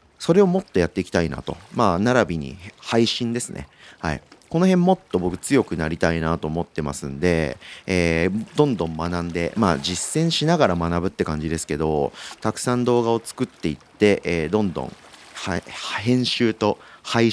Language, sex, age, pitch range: Japanese, male, 40-59, 85-115 Hz